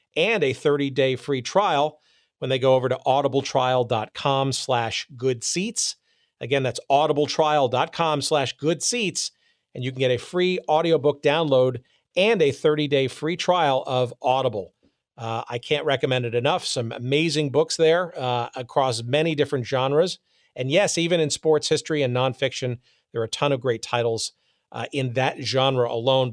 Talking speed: 155 wpm